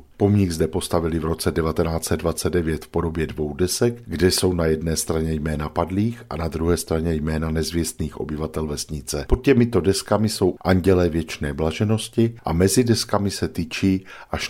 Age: 50-69